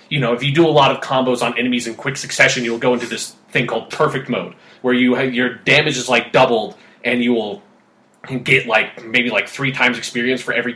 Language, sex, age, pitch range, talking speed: English, male, 20-39, 125-165 Hz, 225 wpm